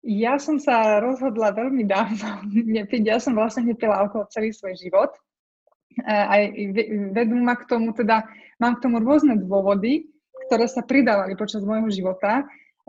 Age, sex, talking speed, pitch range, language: 20-39, female, 140 wpm, 210-240 Hz, Slovak